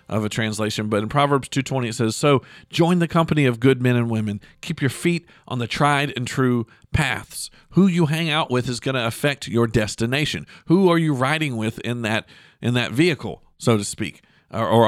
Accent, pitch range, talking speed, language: American, 115-160 Hz, 210 wpm, English